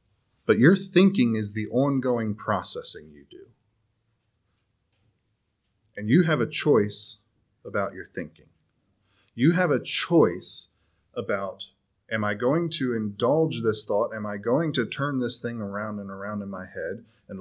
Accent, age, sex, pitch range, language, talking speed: American, 30-49, male, 100-120 Hz, English, 150 wpm